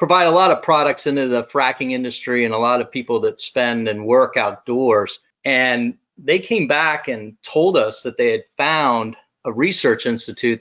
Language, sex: English, male